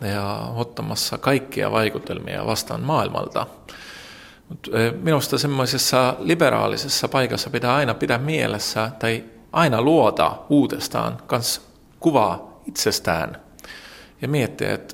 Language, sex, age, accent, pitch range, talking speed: Finnish, male, 40-59, native, 100-125 Hz, 90 wpm